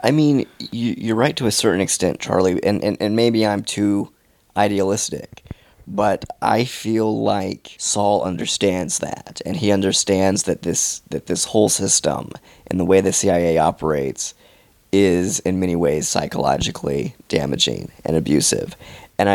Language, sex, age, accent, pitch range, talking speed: English, male, 30-49, American, 90-110 Hz, 150 wpm